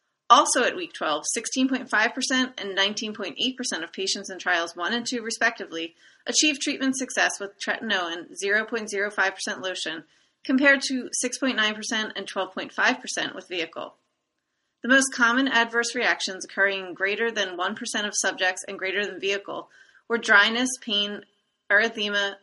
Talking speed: 130 wpm